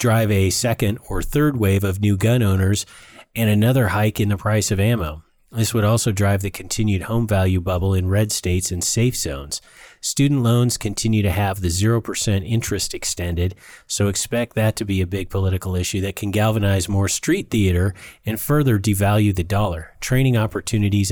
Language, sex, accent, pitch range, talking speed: English, male, American, 95-110 Hz, 180 wpm